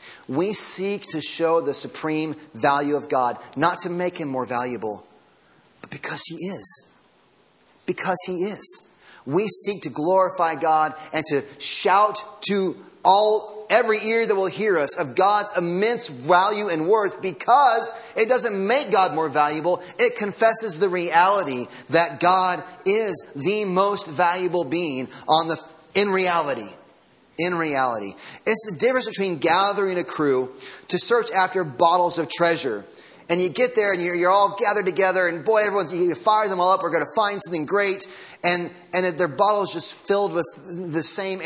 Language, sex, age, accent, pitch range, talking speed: English, male, 30-49, American, 155-200 Hz, 165 wpm